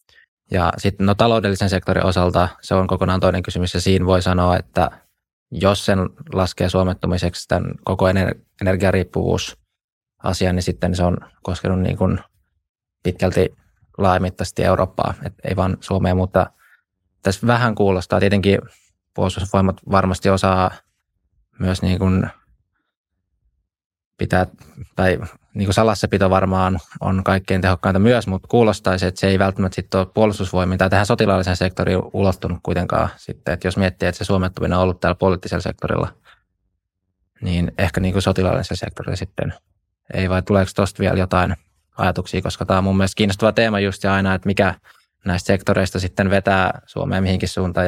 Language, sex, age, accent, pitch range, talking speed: Finnish, male, 20-39, native, 90-95 Hz, 145 wpm